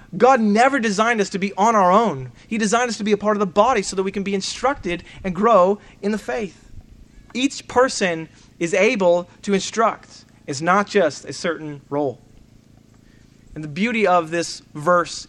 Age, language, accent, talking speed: 30-49, English, American, 190 wpm